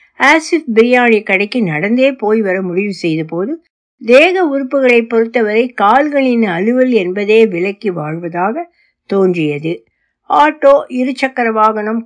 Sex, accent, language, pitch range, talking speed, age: female, native, Tamil, 195-265 Hz, 75 wpm, 60-79